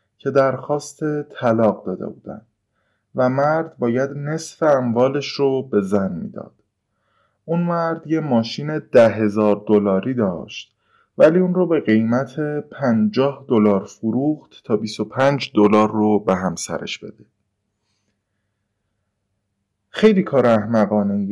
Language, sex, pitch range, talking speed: Persian, male, 105-145 Hz, 115 wpm